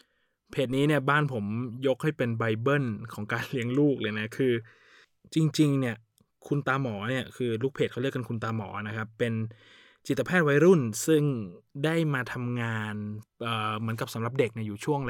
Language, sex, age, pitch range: Thai, male, 20-39, 115-145 Hz